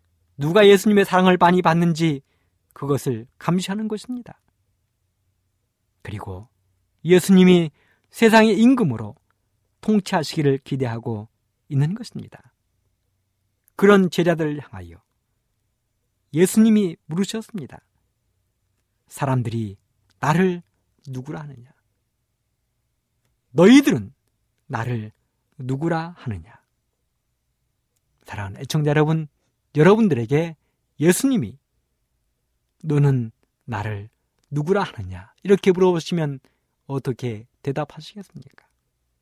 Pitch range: 110-180 Hz